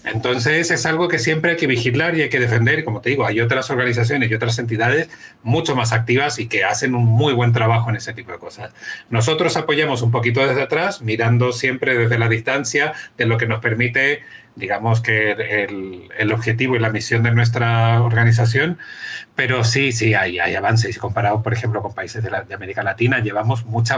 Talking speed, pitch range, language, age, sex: 200 wpm, 115-130 Hz, Spanish, 40-59, male